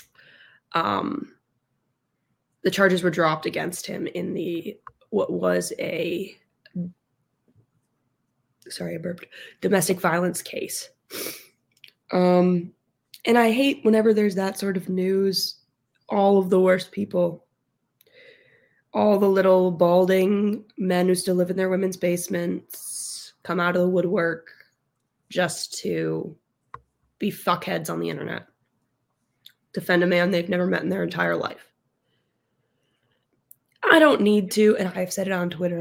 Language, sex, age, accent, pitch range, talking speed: English, female, 20-39, American, 170-195 Hz, 130 wpm